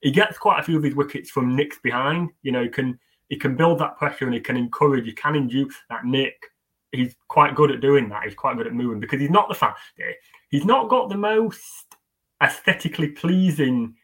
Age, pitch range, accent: 20-39, 135-190 Hz, British